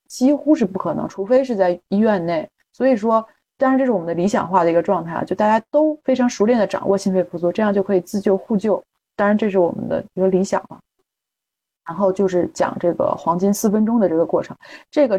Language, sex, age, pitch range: Chinese, female, 20-39, 175-220 Hz